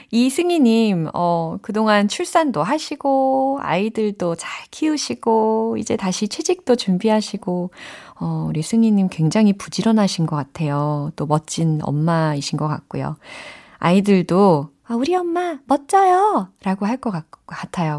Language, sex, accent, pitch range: Korean, female, native, 165-255 Hz